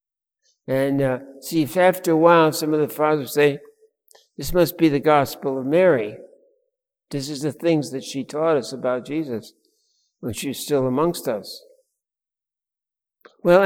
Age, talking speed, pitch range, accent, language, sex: 60-79, 155 wpm, 145-180 Hz, American, English, male